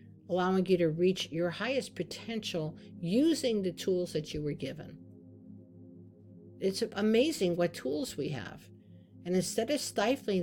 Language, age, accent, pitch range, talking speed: English, 50-69, American, 165-215 Hz, 140 wpm